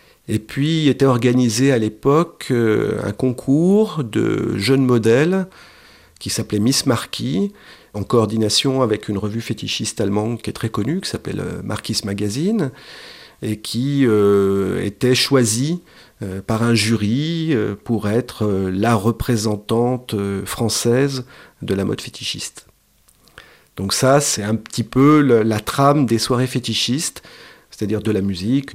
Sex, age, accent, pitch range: male, 40-59, French, 100-125 Hz